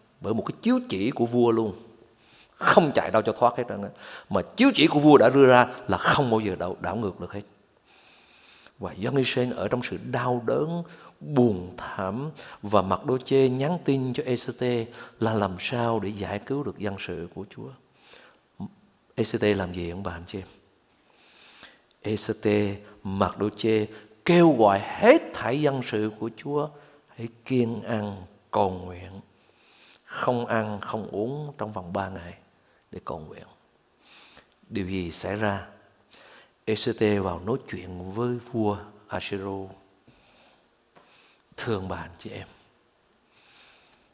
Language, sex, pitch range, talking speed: Vietnamese, male, 100-130 Hz, 155 wpm